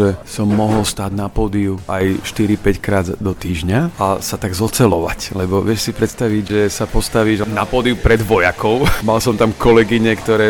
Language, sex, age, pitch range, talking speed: Slovak, male, 40-59, 100-115 Hz, 175 wpm